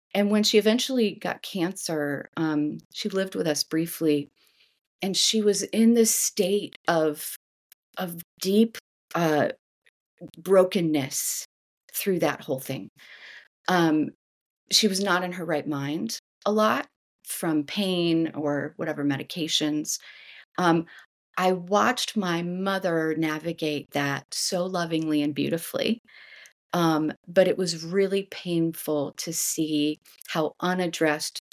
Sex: female